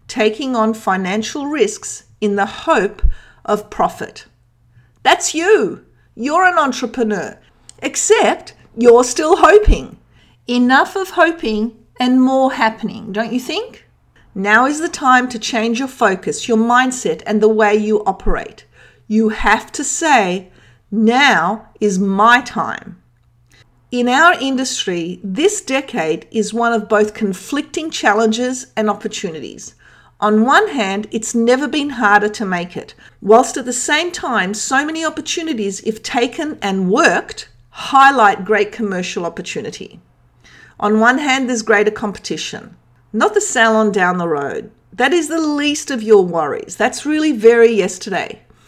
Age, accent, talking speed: 50-69, Australian, 140 wpm